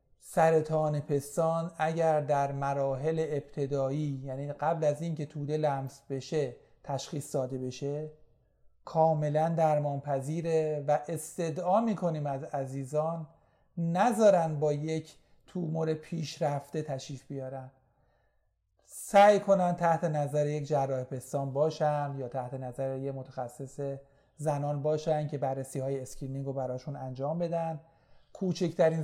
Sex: male